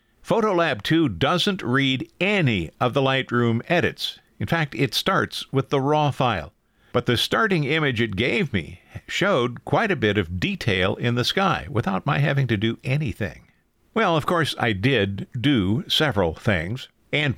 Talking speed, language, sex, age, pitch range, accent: 165 wpm, English, male, 50-69, 115-150 Hz, American